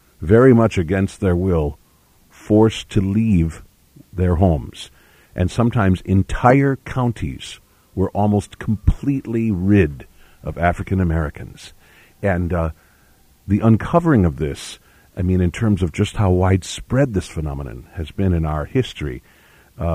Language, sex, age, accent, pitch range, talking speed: English, male, 50-69, American, 80-100 Hz, 125 wpm